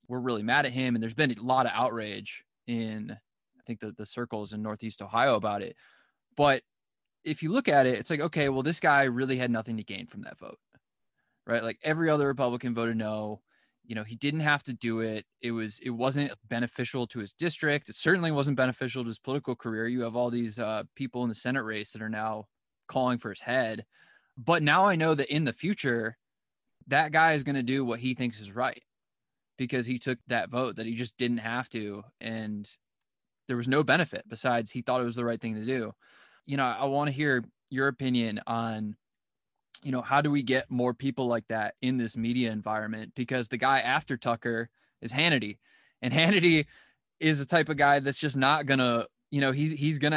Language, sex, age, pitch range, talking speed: English, male, 20-39, 115-140 Hz, 220 wpm